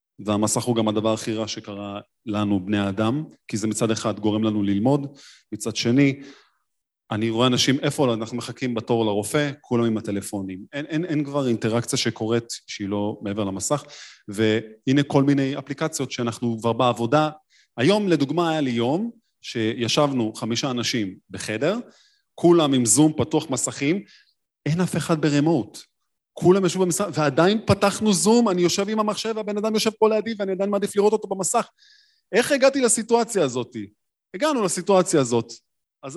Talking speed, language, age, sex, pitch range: 155 wpm, Hebrew, 30-49, male, 110-165 Hz